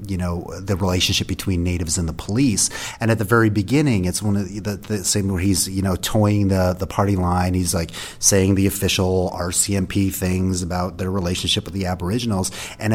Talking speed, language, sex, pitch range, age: 205 wpm, English, male, 95-110 Hz, 30-49